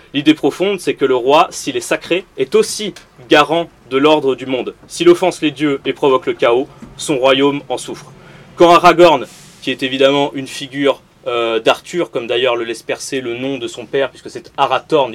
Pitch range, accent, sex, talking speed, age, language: 125-170 Hz, French, male, 200 wpm, 30-49, French